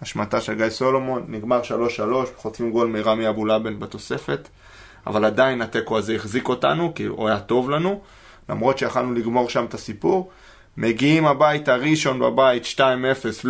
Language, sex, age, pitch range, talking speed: Hebrew, male, 20-39, 110-130 Hz, 150 wpm